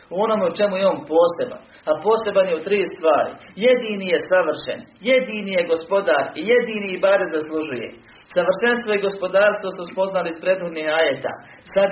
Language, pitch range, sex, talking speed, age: Croatian, 130-190 Hz, male, 155 wpm, 40-59